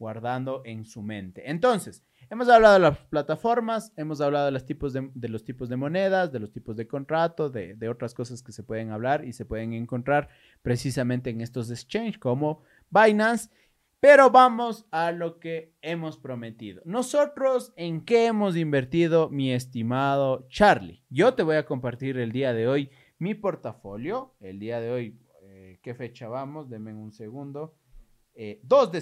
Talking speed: 165 wpm